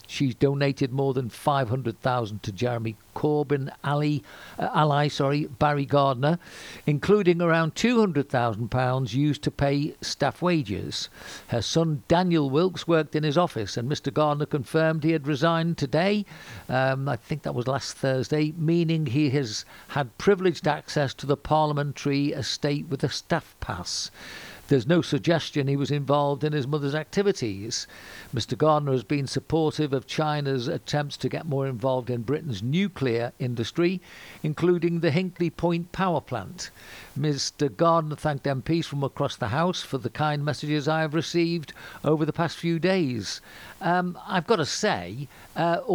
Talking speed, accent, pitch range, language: 150 wpm, British, 135-165 Hz, English